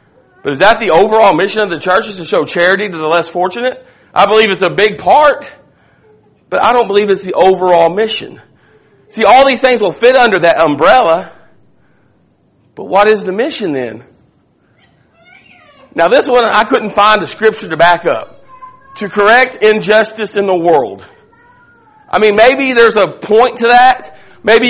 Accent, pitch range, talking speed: American, 185-230 Hz, 175 wpm